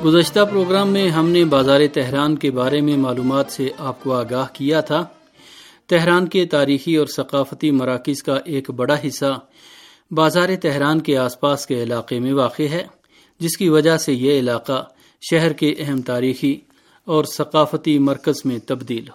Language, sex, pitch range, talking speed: Urdu, male, 135-165 Hz, 165 wpm